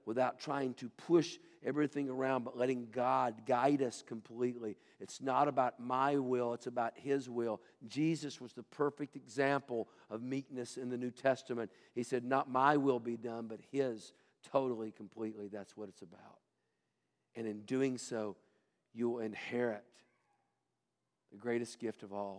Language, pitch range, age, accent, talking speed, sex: English, 110-130 Hz, 50-69, American, 155 wpm, male